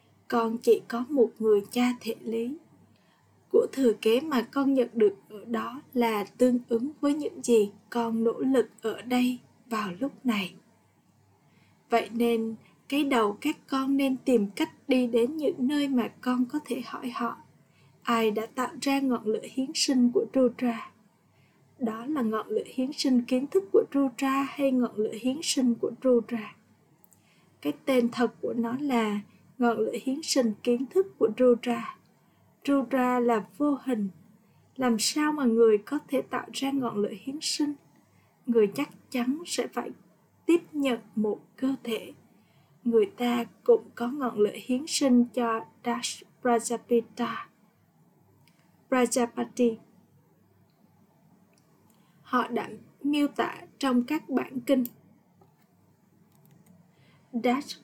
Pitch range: 225-270 Hz